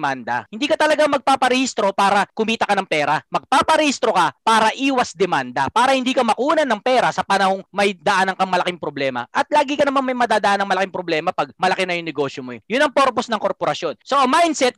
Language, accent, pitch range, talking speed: Filipino, native, 190-270 Hz, 200 wpm